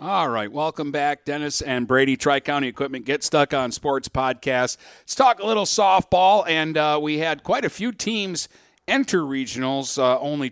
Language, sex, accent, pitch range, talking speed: English, male, American, 120-150 Hz, 175 wpm